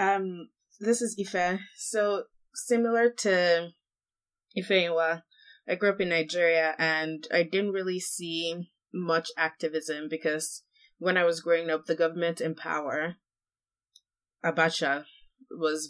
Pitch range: 145-180 Hz